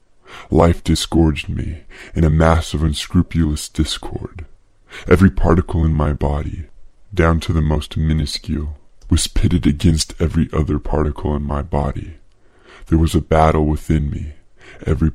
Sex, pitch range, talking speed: female, 75-85 Hz, 140 wpm